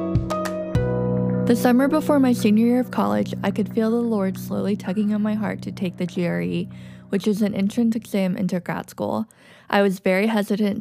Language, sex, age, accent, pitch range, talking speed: English, female, 10-29, American, 175-215 Hz, 190 wpm